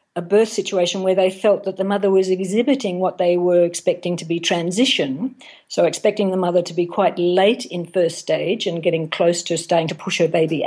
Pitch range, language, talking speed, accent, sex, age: 170-205 Hz, English, 215 wpm, Australian, female, 50-69